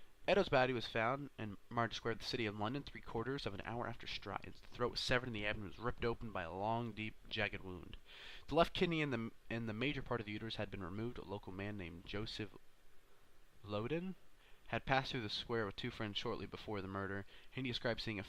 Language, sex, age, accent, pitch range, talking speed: English, male, 20-39, American, 100-125 Hz, 240 wpm